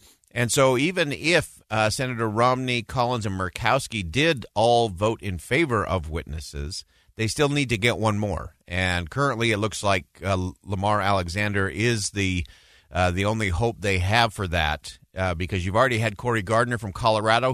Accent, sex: American, male